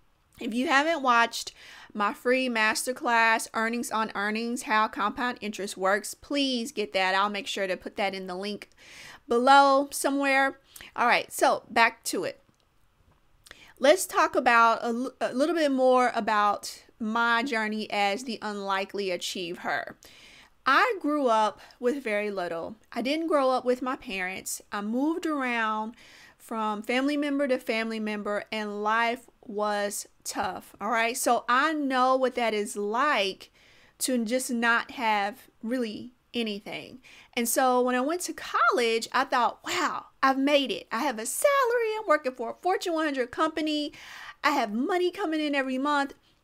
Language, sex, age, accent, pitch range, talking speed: English, female, 30-49, American, 215-280 Hz, 155 wpm